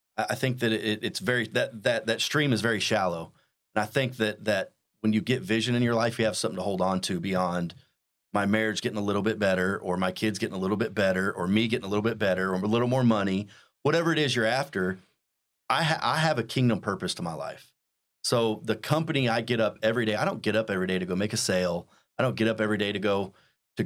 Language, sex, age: English, male, 30-49